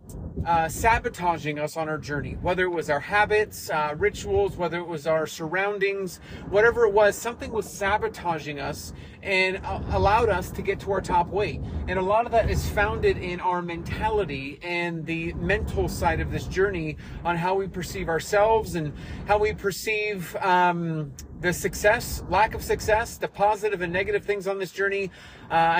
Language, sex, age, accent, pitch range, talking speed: English, male, 30-49, American, 165-200 Hz, 175 wpm